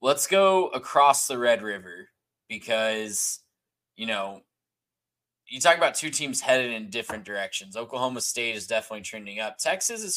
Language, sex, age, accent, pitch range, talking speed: English, male, 10-29, American, 105-130 Hz, 155 wpm